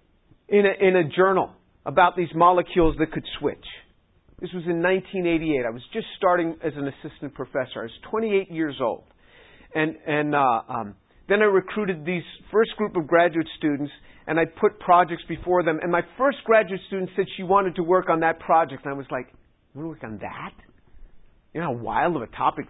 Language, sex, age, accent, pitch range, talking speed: English, male, 50-69, American, 160-235 Hz, 205 wpm